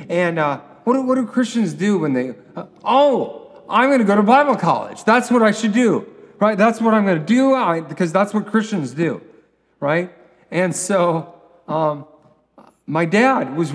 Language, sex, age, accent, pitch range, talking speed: English, male, 40-59, American, 115-175 Hz, 185 wpm